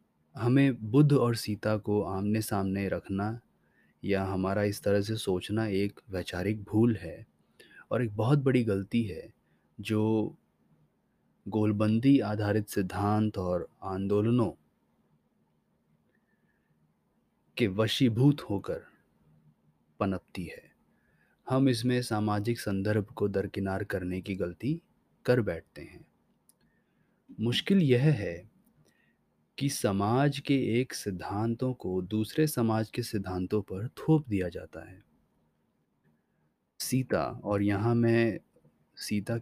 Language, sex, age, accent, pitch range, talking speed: Hindi, male, 30-49, native, 95-120 Hz, 105 wpm